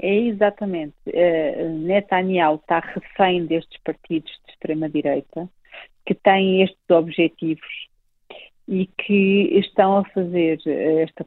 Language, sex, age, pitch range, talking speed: Portuguese, female, 40-59, 165-195 Hz, 100 wpm